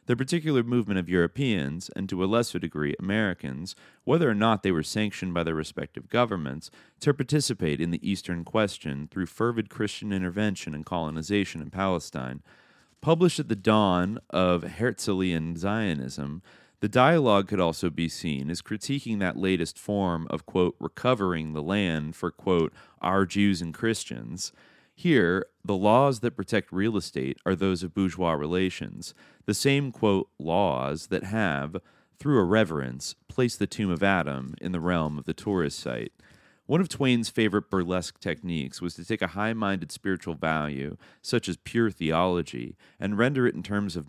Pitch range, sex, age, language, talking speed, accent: 80-105 Hz, male, 30-49, English, 160 wpm, American